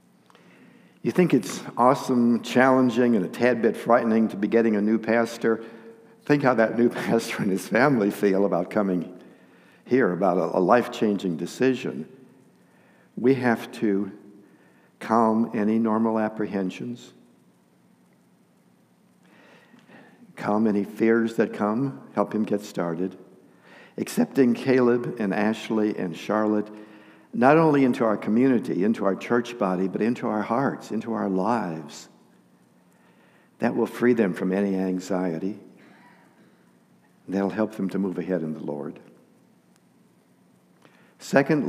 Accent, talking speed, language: American, 125 wpm, English